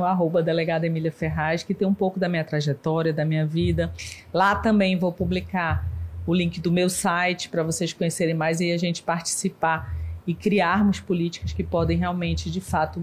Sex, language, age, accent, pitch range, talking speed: female, Portuguese, 40-59, Brazilian, 155-185 Hz, 180 wpm